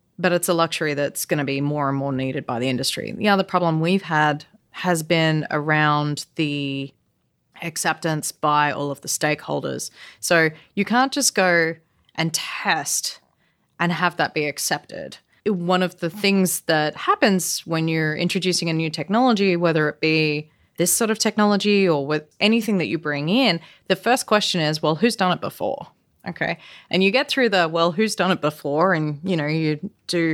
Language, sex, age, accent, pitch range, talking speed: English, female, 30-49, Australian, 155-195 Hz, 185 wpm